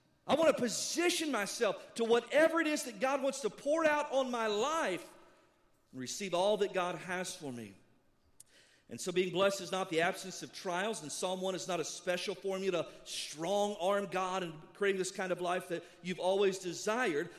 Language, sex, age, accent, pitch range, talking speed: English, male, 40-59, American, 185-255 Hz, 195 wpm